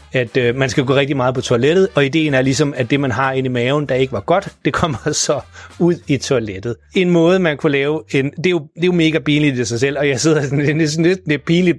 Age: 30-49